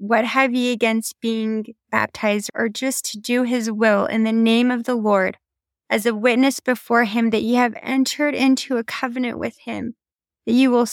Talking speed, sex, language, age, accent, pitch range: 190 wpm, female, English, 20-39, American, 215-250 Hz